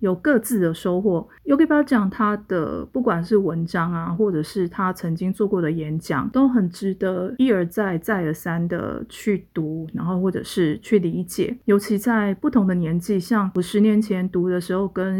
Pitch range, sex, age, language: 180-230 Hz, female, 30-49, Chinese